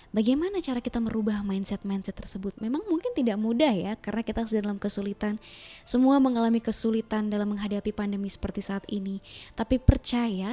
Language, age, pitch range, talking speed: Indonesian, 20-39, 195-240 Hz, 155 wpm